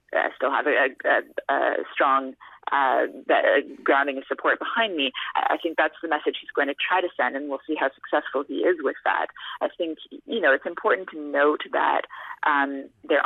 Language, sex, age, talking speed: English, female, 30-49, 195 wpm